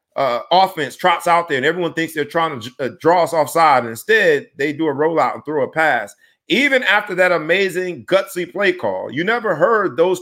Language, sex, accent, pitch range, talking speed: English, male, American, 140-205 Hz, 215 wpm